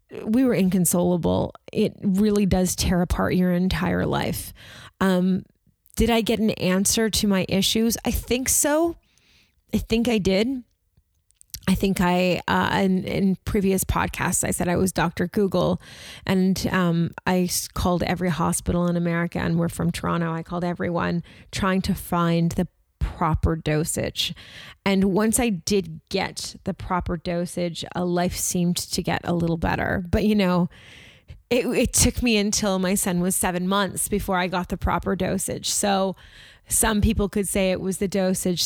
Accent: American